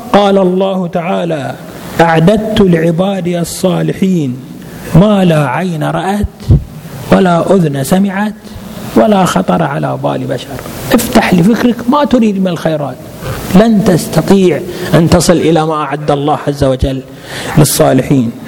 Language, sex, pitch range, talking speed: Arabic, male, 150-205 Hz, 115 wpm